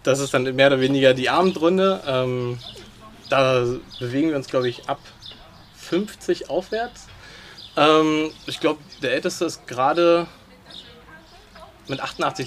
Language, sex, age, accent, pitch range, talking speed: German, male, 20-39, German, 115-150 Hz, 130 wpm